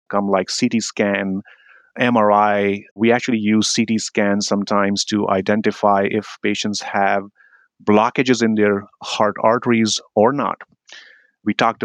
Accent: Indian